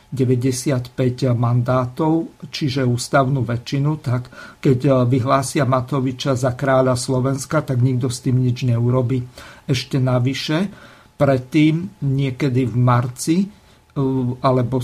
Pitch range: 125-140 Hz